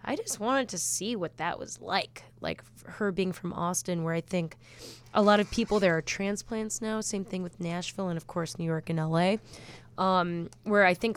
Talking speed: 215 wpm